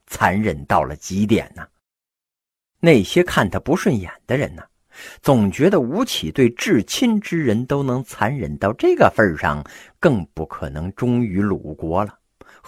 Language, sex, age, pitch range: Chinese, male, 50-69, 90-150 Hz